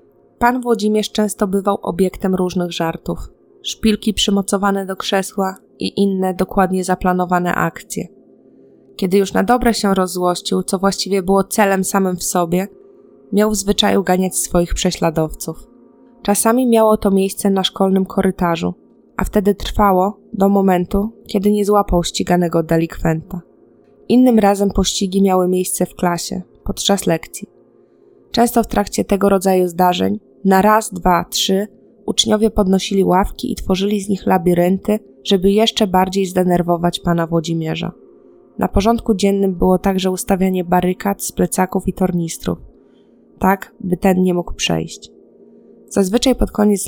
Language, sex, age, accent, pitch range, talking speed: Polish, female, 20-39, native, 180-205 Hz, 135 wpm